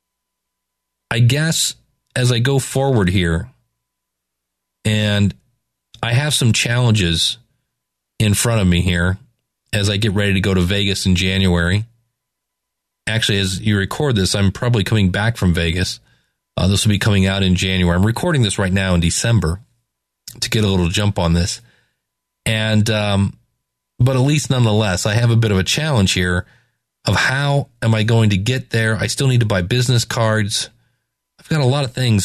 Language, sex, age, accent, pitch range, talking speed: English, male, 40-59, American, 95-120 Hz, 175 wpm